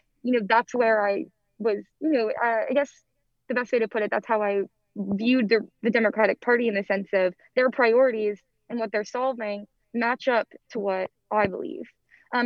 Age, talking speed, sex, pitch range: 10-29, 200 wpm, female, 200-245 Hz